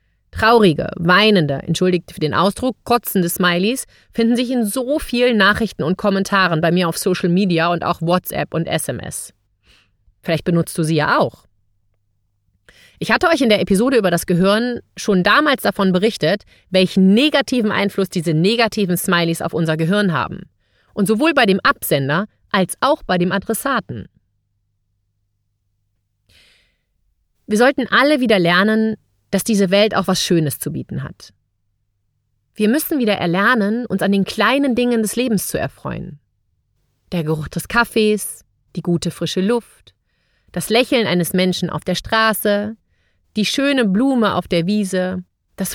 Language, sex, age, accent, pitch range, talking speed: German, female, 30-49, German, 150-220 Hz, 150 wpm